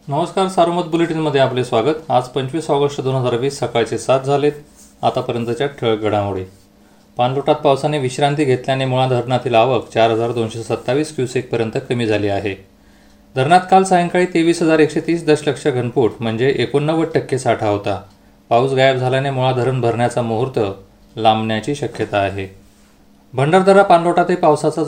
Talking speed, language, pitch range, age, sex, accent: 130 wpm, Marathi, 115-150 Hz, 30-49, male, native